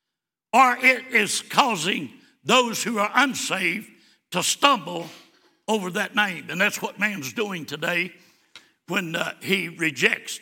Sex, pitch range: male, 210-290 Hz